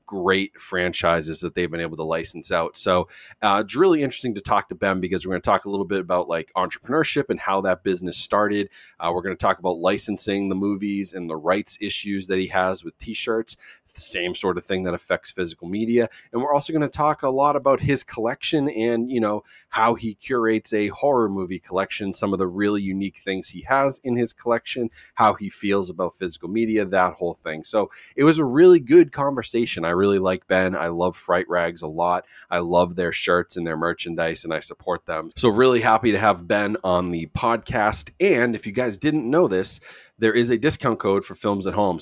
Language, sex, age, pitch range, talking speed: English, male, 30-49, 90-115 Hz, 215 wpm